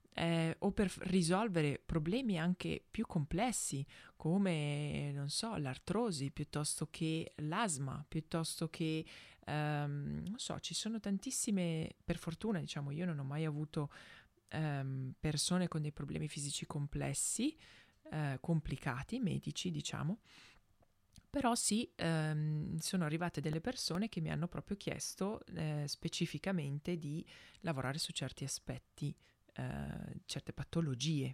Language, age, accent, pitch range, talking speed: Italian, 20-39, native, 145-180 Hz, 125 wpm